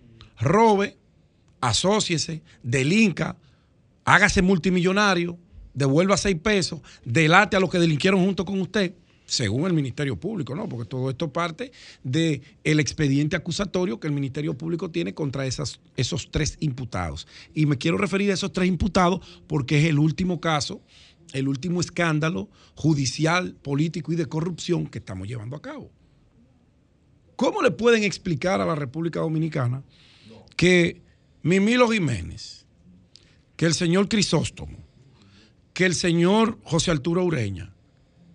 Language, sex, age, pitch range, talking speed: Spanish, male, 40-59, 135-180 Hz, 130 wpm